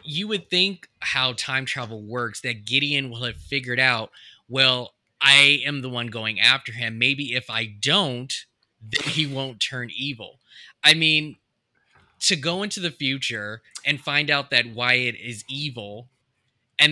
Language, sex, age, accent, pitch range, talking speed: English, male, 20-39, American, 120-145 Hz, 155 wpm